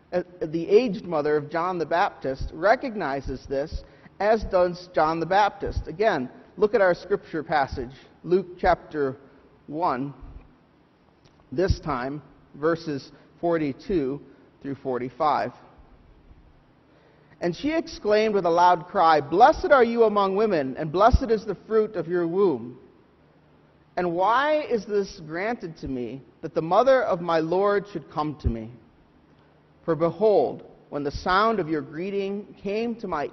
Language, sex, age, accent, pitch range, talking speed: English, male, 40-59, American, 150-200 Hz, 140 wpm